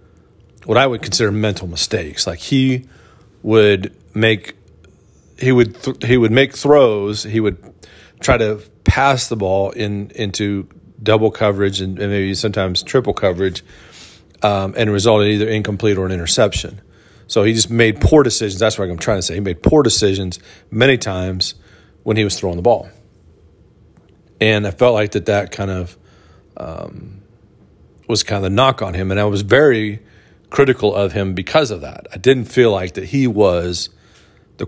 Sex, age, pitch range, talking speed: male, 40-59, 95-115 Hz, 175 wpm